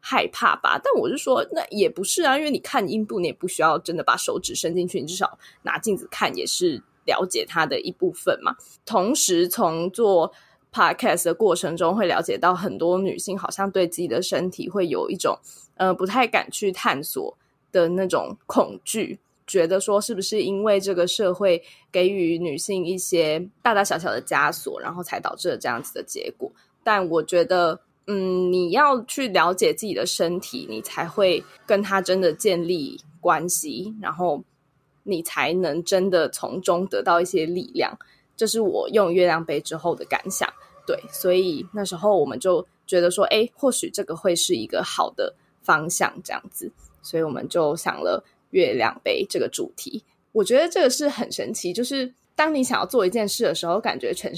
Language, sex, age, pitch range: Chinese, female, 20-39, 175-235 Hz